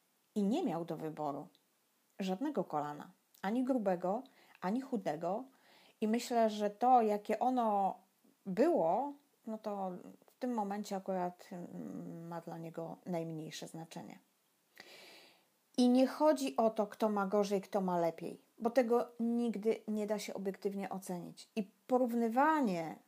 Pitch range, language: 195-250 Hz, Polish